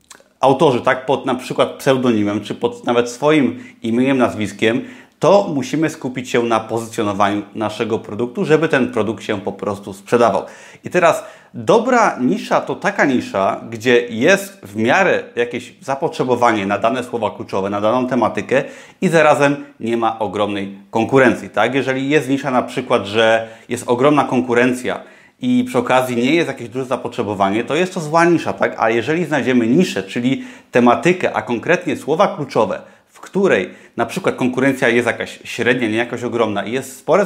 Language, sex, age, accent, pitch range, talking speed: Polish, male, 30-49, native, 115-145 Hz, 165 wpm